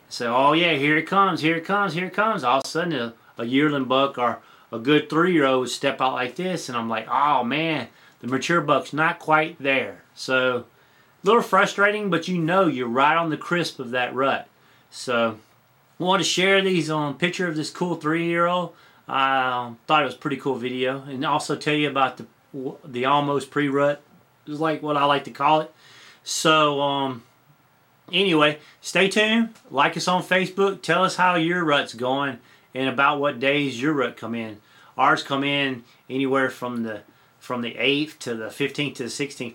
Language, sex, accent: English, male, American